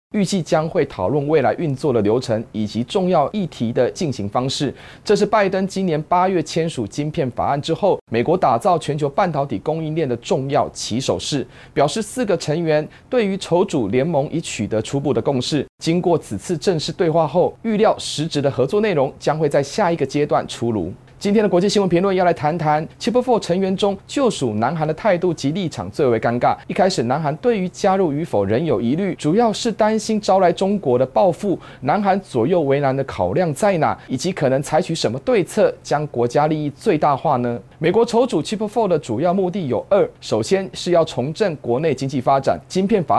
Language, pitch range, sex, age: Chinese, 135-190 Hz, male, 30-49